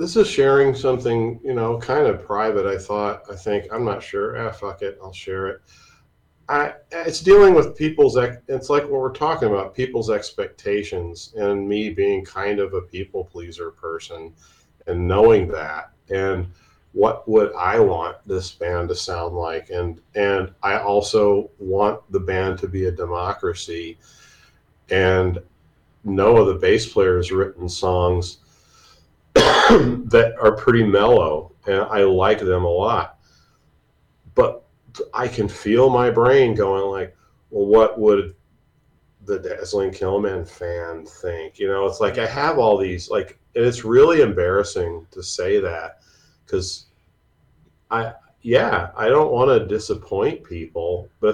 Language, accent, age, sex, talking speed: English, American, 40-59, male, 150 wpm